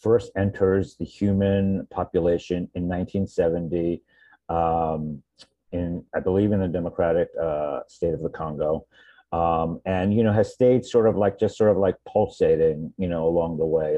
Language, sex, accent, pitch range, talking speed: English, male, American, 90-110 Hz, 165 wpm